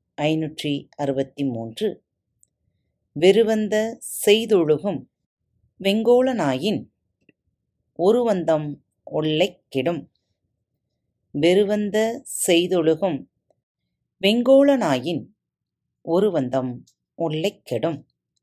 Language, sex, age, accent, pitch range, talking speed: Tamil, female, 30-49, native, 140-205 Hz, 40 wpm